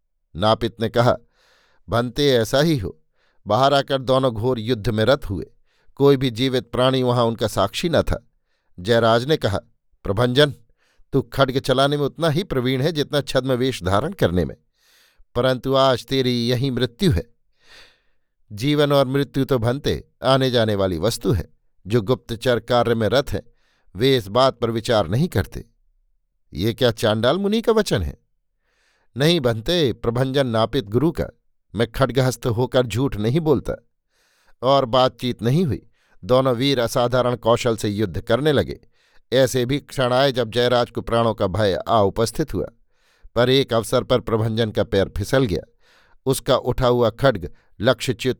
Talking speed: 160 wpm